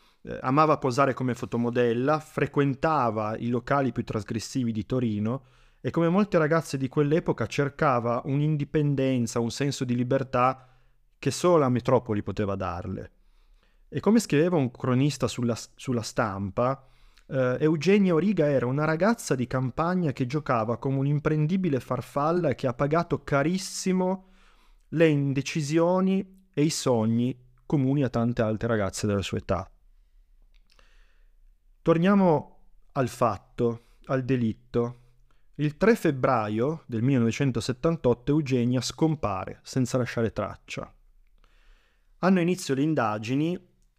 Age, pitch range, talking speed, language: 30-49, 120-155 Hz, 115 wpm, Italian